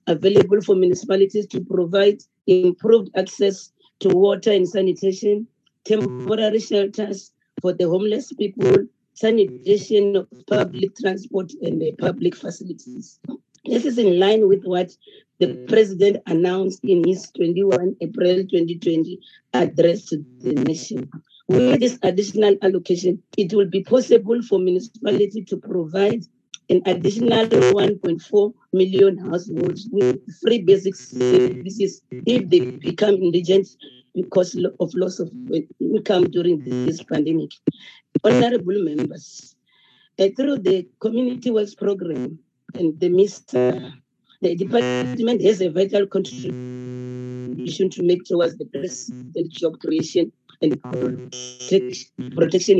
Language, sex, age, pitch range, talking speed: English, female, 40-59, 175-205 Hz, 115 wpm